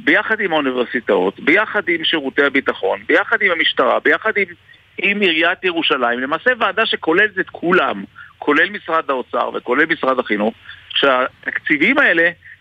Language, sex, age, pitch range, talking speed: Hebrew, male, 50-69, 145-220 Hz, 130 wpm